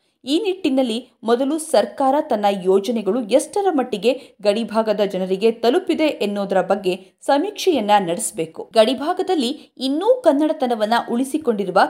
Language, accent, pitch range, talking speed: Kannada, native, 210-290 Hz, 95 wpm